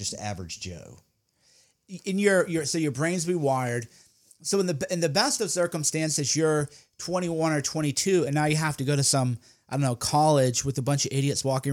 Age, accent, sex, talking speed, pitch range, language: 30-49, American, male, 210 wpm, 135-160 Hz, English